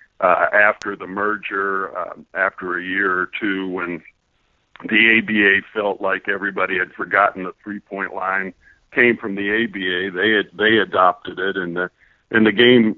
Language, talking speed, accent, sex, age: English, 160 wpm, American, male, 60-79